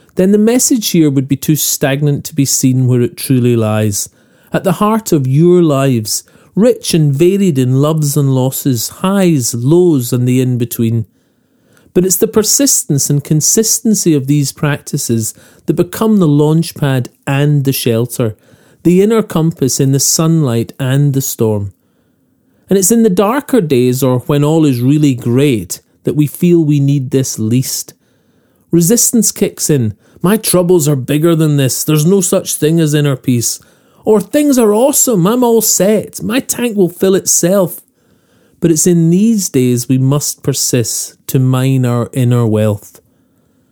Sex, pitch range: male, 130-185 Hz